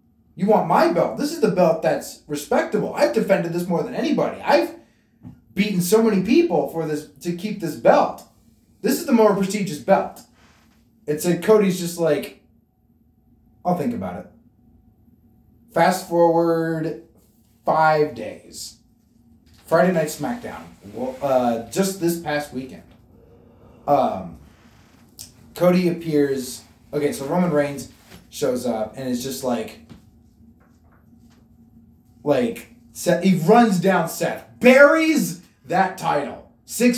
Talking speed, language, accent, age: 125 wpm, English, American, 20-39